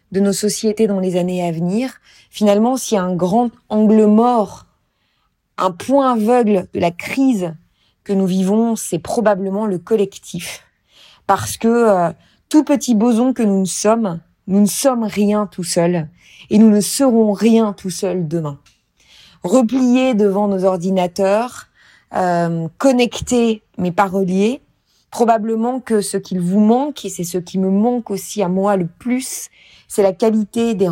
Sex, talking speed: female, 160 wpm